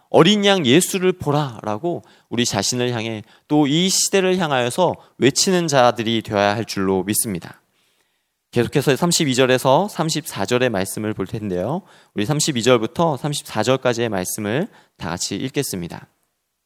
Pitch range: 105-150 Hz